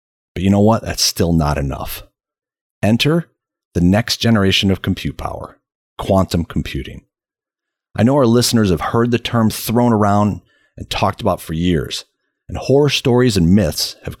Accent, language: American, English